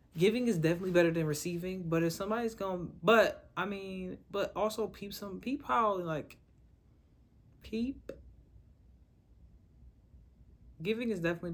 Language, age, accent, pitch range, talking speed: English, 20-39, American, 120-165 Hz, 125 wpm